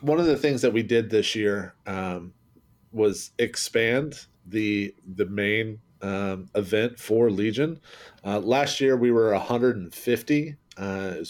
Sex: male